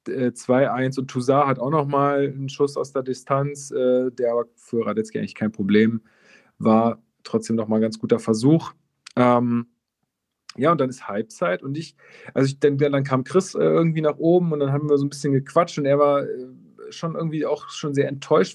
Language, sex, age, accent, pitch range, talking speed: German, male, 40-59, German, 130-160 Hz, 195 wpm